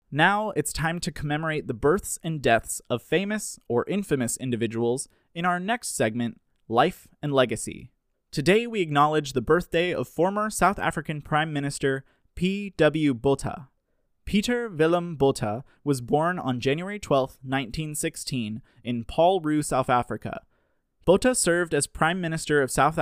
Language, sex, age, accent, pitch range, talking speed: English, male, 20-39, American, 125-165 Hz, 145 wpm